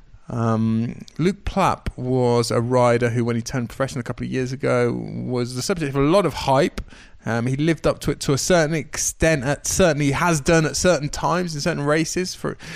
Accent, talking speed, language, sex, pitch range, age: British, 210 wpm, English, male, 120-160 Hz, 20-39